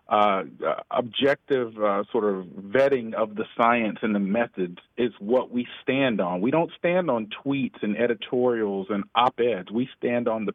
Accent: American